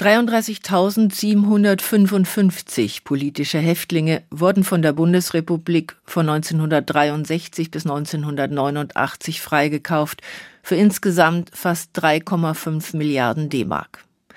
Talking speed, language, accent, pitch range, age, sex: 75 wpm, German, German, 150-190 Hz, 50-69, female